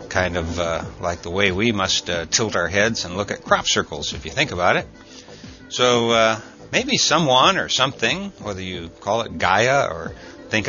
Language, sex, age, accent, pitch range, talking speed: English, male, 60-79, American, 95-125 Hz, 195 wpm